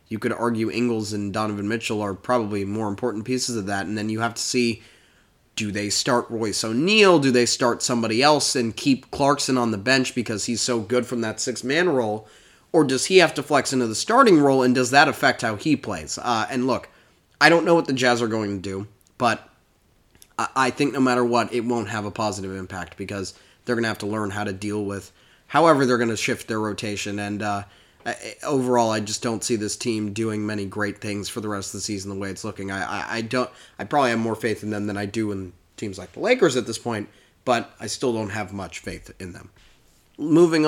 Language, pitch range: English, 105-130 Hz